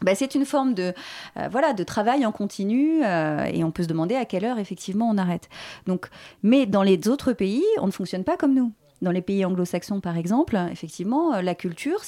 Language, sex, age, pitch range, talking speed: French, female, 30-49, 185-270 Hz, 220 wpm